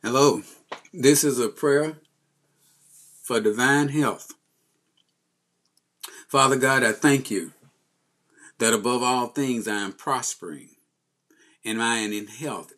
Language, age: English, 50-69